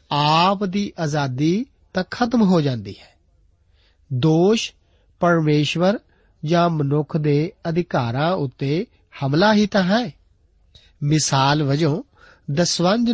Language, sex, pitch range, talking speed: Punjabi, male, 135-195 Hz, 100 wpm